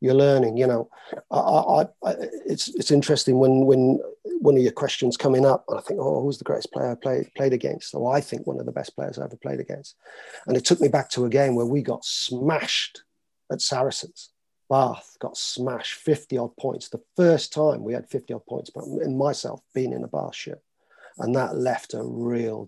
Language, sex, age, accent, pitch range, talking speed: English, male, 40-59, British, 125-155 Hz, 220 wpm